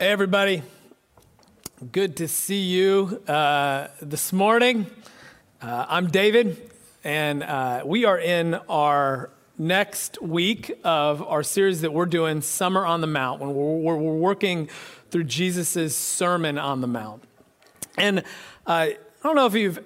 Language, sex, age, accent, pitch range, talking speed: English, male, 40-59, American, 170-240 Hz, 145 wpm